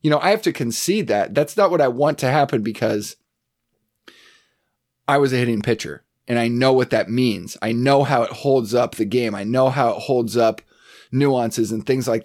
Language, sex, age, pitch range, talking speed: English, male, 30-49, 120-155 Hz, 215 wpm